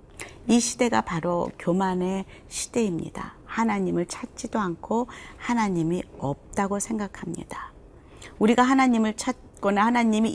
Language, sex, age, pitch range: Korean, female, 40-59, 165-225 Hz